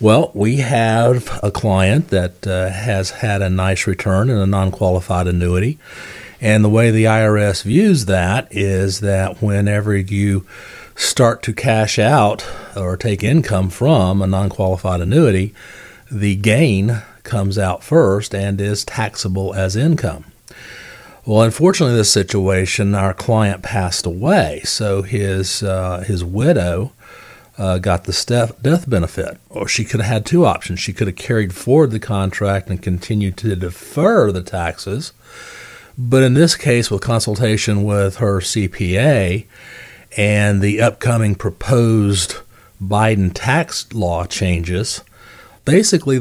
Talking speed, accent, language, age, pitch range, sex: 135 wpm, American, English, 40-59, 95-120 Hz, male